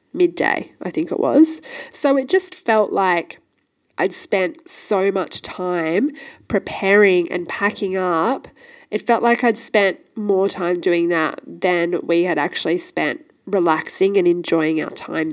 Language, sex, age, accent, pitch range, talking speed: English, female, 20-39, Australian, 180-280 Hz, 150 wpm